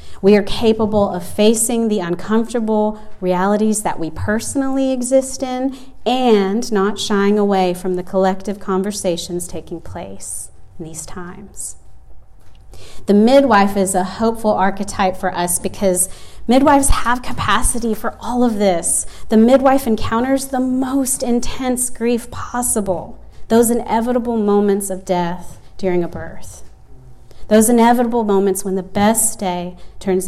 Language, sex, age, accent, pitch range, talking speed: English, female, 30-49, American, 180-225 Hz, 130 wpm